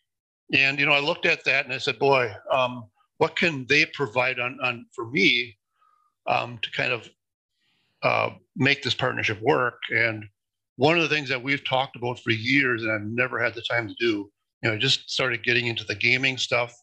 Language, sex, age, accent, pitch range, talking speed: English, male, 50-69, American, 110-135 Hz, 205 wpm